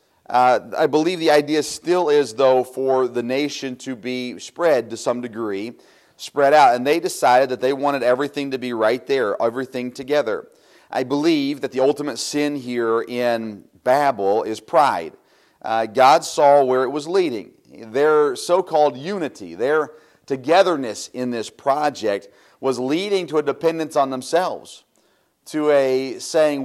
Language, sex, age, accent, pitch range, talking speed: English, male, 40-59, American, 125-160 Hz, 155 wpm